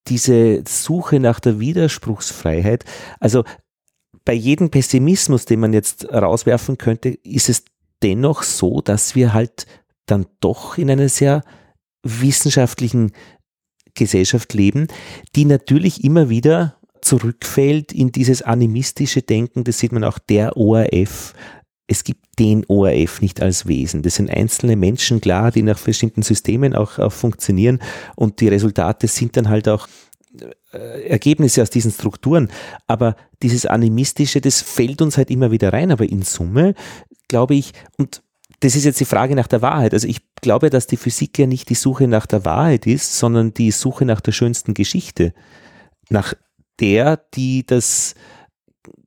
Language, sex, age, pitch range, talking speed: German, male, 40-59, 110-135 Hz, 150 wpm